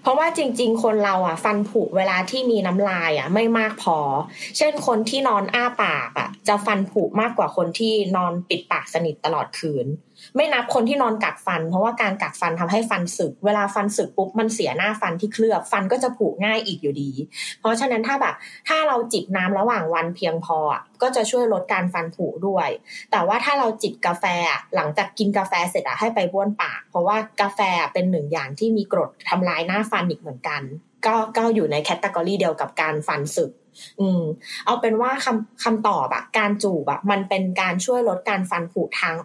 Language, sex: Thai, female